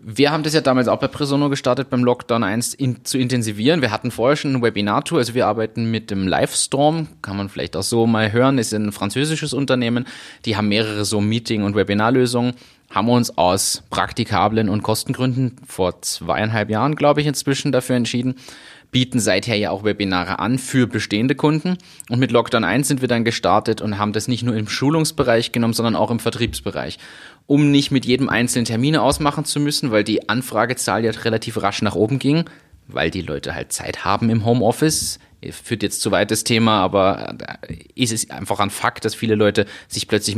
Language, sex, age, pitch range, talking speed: German, male, 30-49, 105-130 Hz, 200 wpm